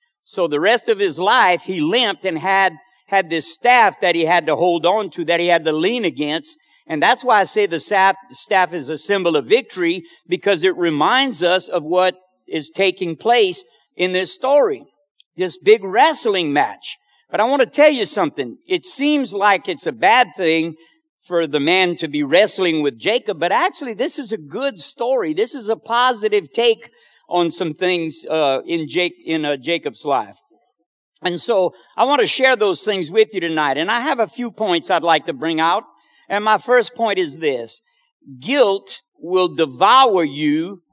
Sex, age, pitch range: male, 50-69, 165-260 Hz